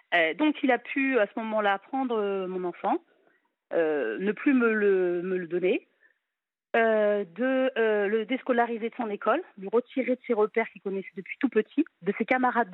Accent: French